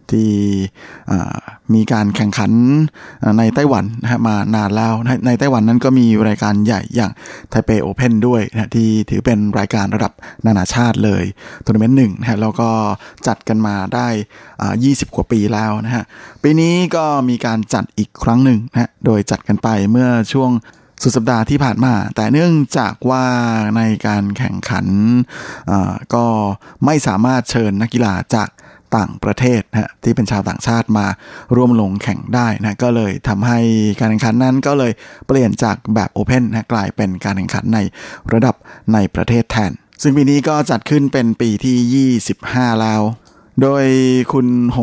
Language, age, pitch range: Thai, 20-39, 105-125 Hz